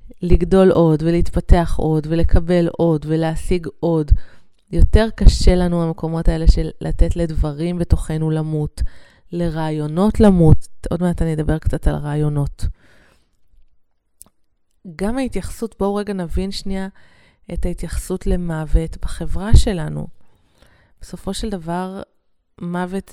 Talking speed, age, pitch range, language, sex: 110 wpm, 20-39, 150-185 Hz, Hebrew, female